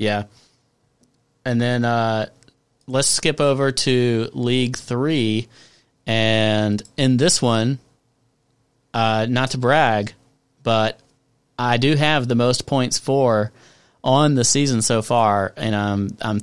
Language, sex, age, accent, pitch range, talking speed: English, male, 30-49, American, 110-130 Hz, 130 wpm